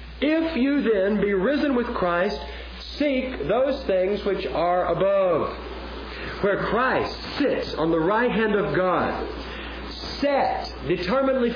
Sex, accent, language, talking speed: male, American, English, 125 wpm